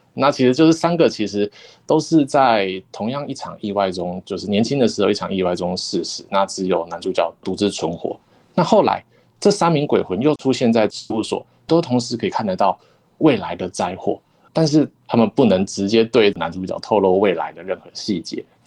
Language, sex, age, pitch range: Chinese, male, 20-39, 95-120 Hz